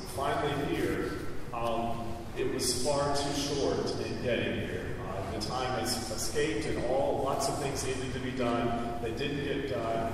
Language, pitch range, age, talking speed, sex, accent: English, 115-135 Hz, 30-49, 165 wpm, male, American